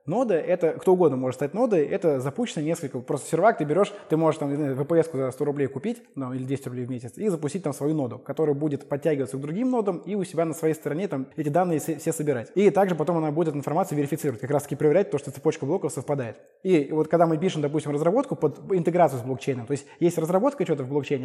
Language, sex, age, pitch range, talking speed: Russian, male, 20-39, 140-175 Hz, 235 wpm